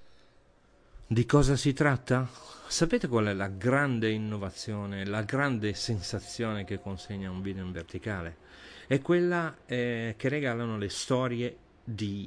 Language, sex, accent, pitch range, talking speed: Italian, male, native, 100-125 Hz, 130 wpm